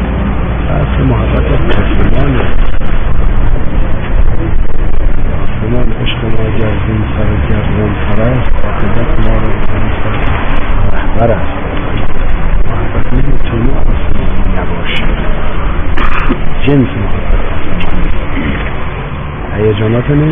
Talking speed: 30 wpm